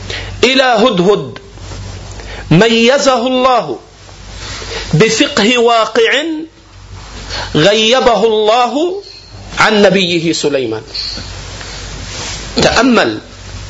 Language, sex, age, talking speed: Arabic, male, 50-69, 55 wpm